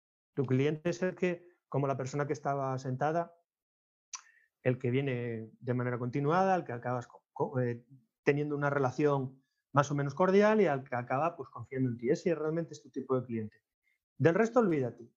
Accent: Spanish